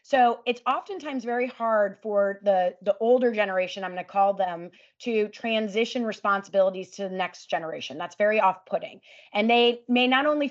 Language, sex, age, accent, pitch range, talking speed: English, female, 30-49, American, 200-245 Hz, 175 wpm